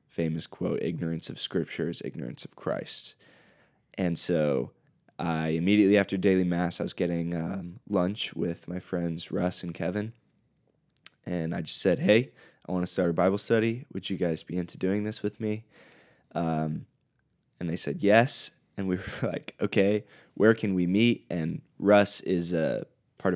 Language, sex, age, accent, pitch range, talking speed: English, male, 20-39, American, 85-95 Hz, 170 wpm